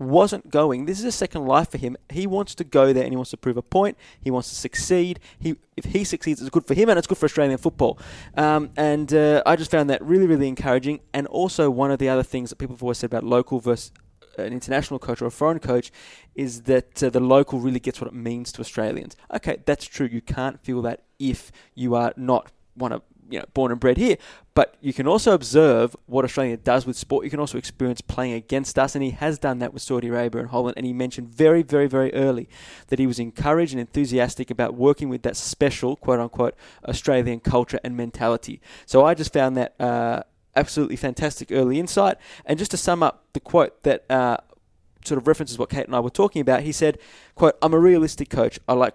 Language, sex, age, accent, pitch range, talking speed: English, male, 20-39, Australian, 125-150 Hz, 235 wpm